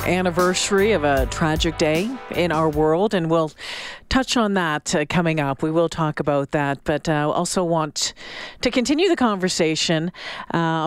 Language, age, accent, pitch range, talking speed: English, 40-59, American, 160-225 Hz, 165 wpm